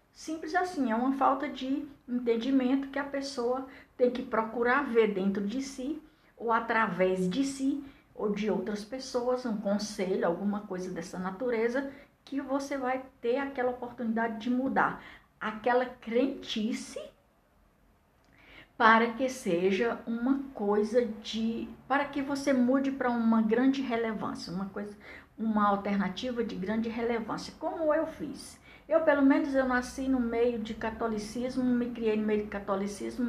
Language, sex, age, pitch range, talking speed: Portuguese, female, 60-79, 210-270 Hz, 145 wpm